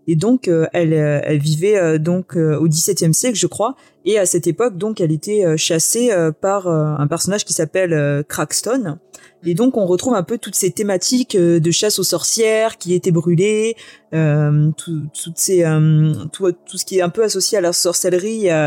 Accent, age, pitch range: French, 20-39, 160-195 Hz